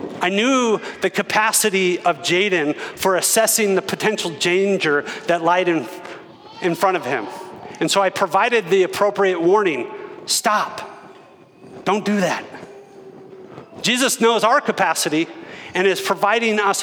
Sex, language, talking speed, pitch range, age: male, English, 130 wpm, 180-220 Hz, 40-59